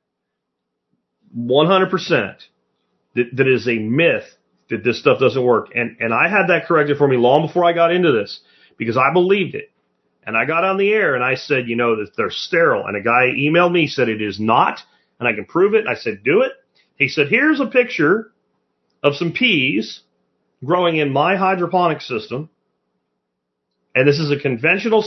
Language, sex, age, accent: English, male, 40-59, American